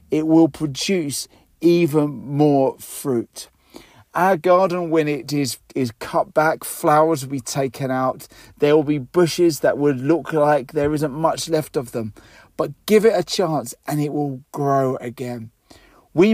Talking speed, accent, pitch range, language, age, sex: 160 wpm, British, 125-165 Hz, English, 40-59, male